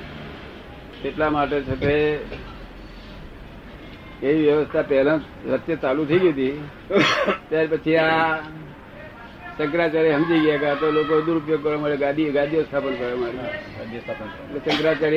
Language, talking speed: Gujarati, 55 wpm